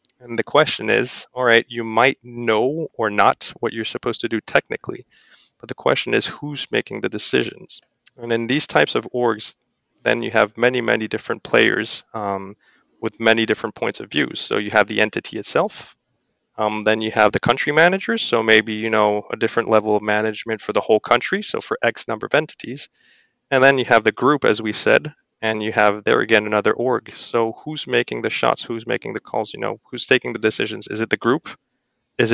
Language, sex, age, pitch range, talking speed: English, male, 20-39, 110-120 Hz, 210 wpm